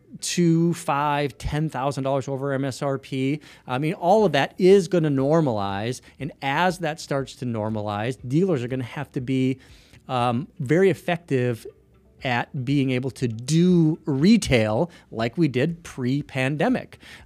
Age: 40-59